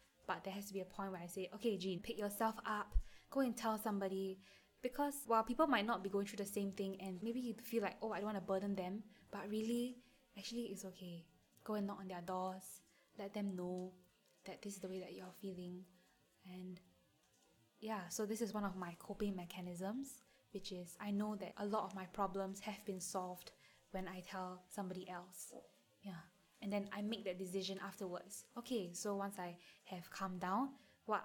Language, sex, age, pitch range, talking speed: English, female, 10-29, 185-210 Hz, 205 wpm